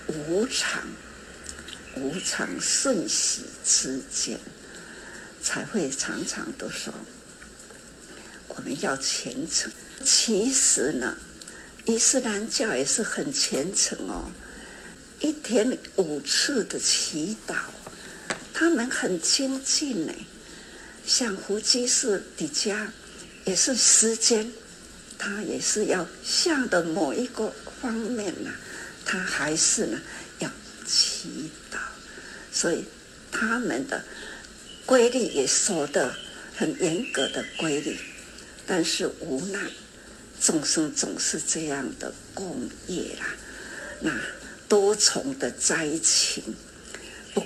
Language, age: Chinese, 60-79